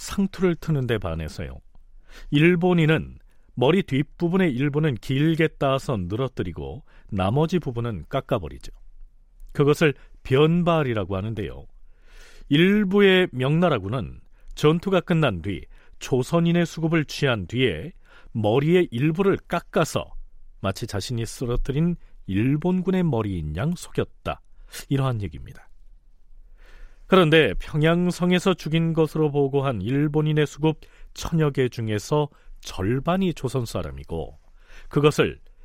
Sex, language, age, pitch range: male, Korean, 40-59, 110-165 Hz